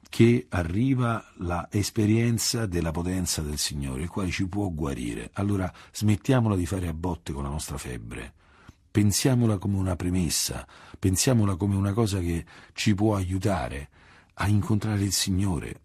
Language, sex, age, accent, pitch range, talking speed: Italian, male, 50-69, native, 85-110 Hz, 145 wpm